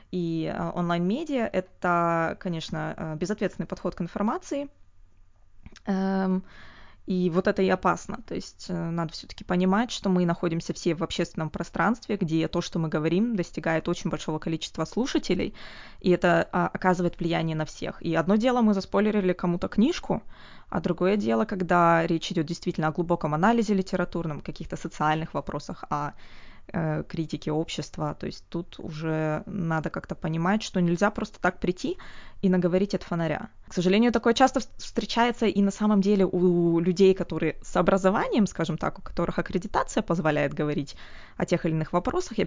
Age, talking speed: 20-39, 155 wpm